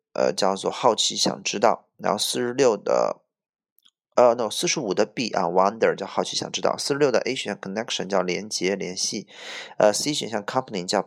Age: 20-39